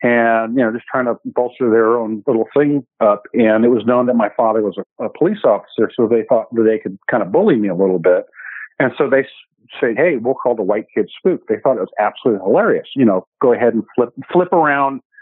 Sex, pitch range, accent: male, 115-135 Hz, American